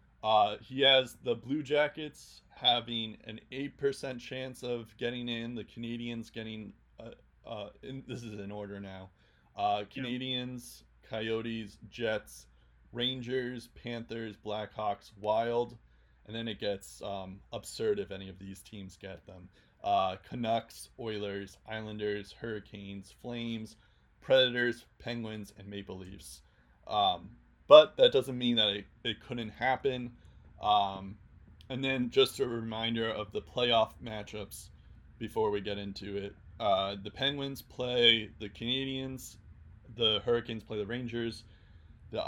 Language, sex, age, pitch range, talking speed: English, male, 20-39, 100-120 Hz, 130 wpm